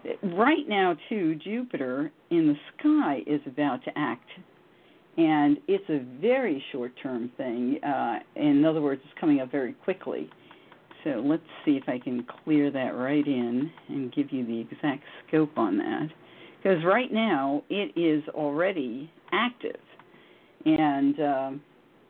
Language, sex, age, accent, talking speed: English, female, 50-69, American, 145 wpm